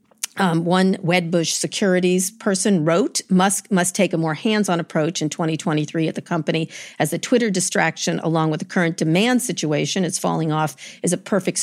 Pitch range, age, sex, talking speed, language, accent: 155-190 Hz, 50-69, female, 175 wpm, English, American